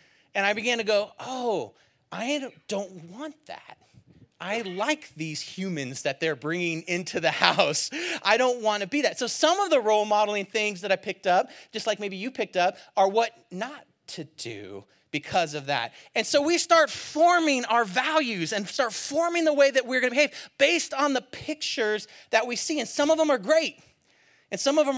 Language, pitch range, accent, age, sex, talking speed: English, 200-285 Hz, American, 30-49, male, 205 wpm